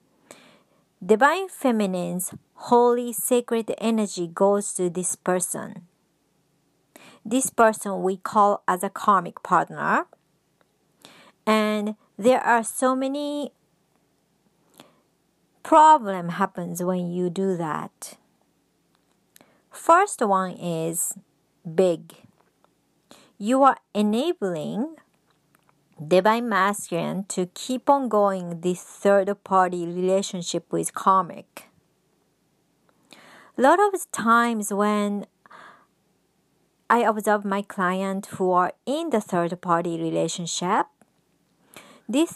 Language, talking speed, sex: English, 90 wpm, male